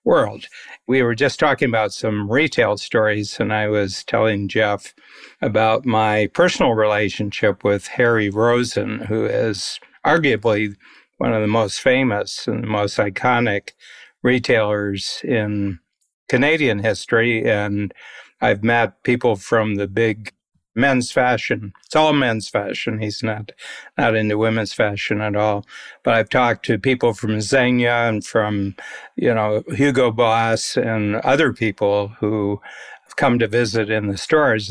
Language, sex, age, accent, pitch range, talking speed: English, male, 60-79, American, 105-120 Hz, 140 wpm